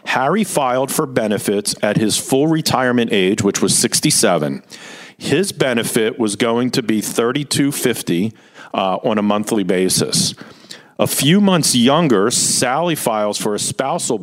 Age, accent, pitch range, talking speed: 50-69, American, 110-145 Hz, 140 wpm